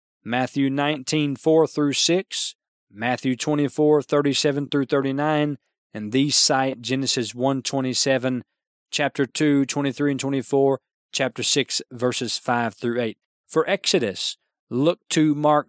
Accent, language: American, English